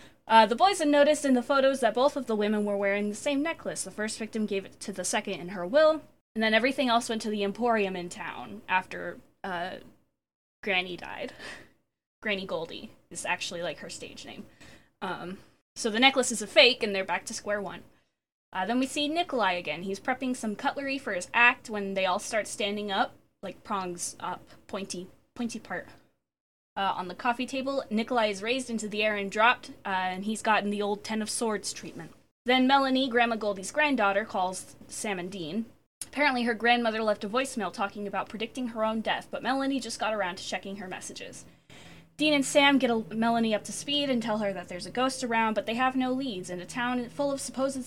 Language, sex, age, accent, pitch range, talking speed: English, female, 10-29, American, 200-260 Hz, 210 wpm